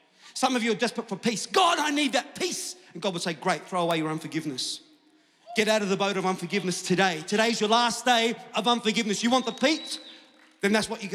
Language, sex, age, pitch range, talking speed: English, male, 40-59, 175-235 Hz, 230 wpm